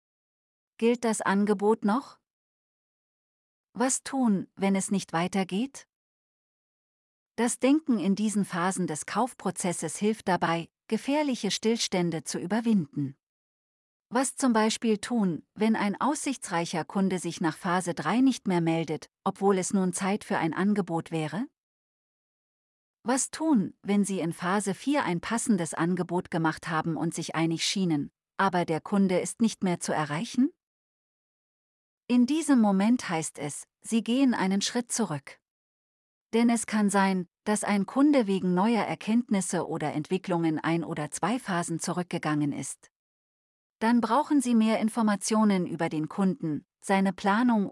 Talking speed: 135 wpm